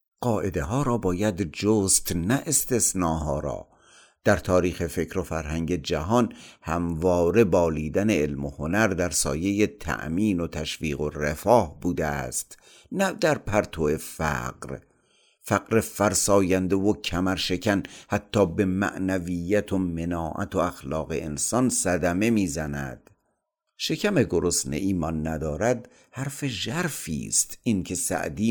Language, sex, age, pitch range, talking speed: Persian, male, 50-69, 80-100 Hz, 120 wpm